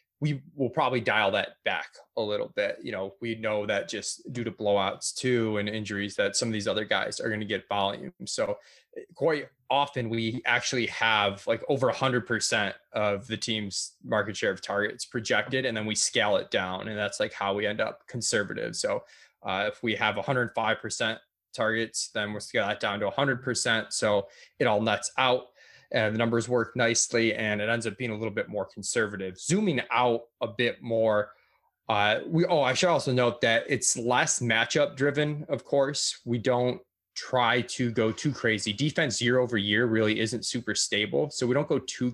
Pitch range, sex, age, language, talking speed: 110-140 Hz, male, 20-39, English, 200 wpm